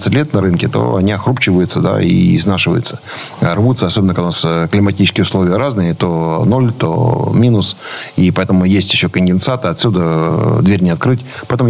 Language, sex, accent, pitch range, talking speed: Russian, male, native, 95-125 Hz, 160 wpm